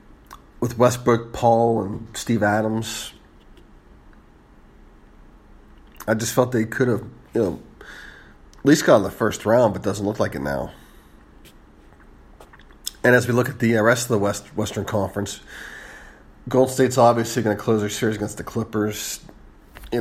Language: English